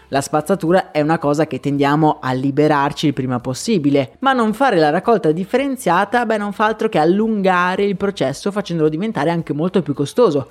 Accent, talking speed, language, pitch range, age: native, 175 wpm, Italian, 155-215 Hz, 30-49